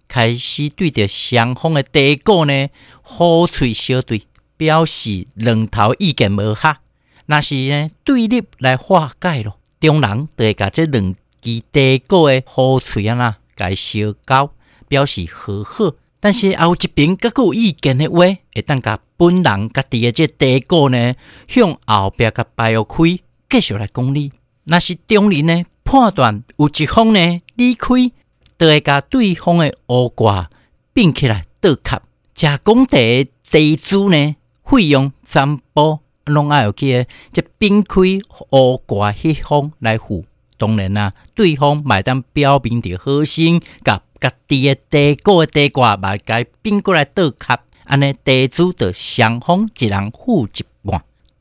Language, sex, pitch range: Chinese, male, 120-170 Hz